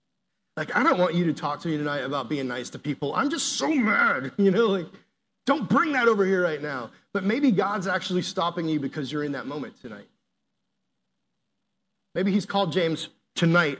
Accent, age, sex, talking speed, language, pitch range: American, 30-49, male, 200 wpm, English, 150-195 Hz